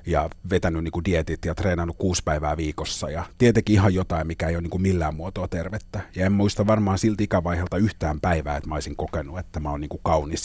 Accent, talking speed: native, 210 wpm